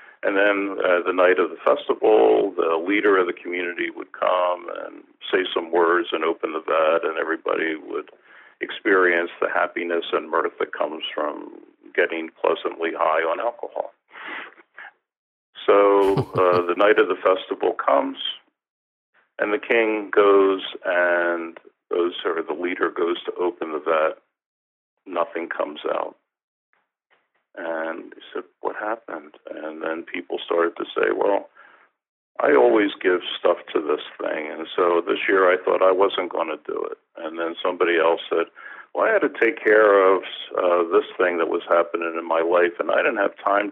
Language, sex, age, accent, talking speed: English, male, 50-69, American, 165 wpm